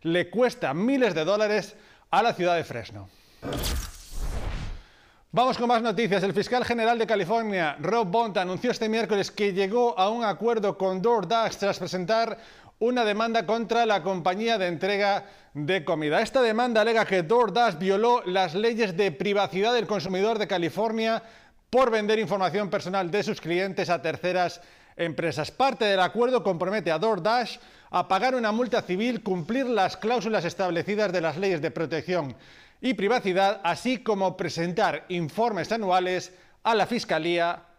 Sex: male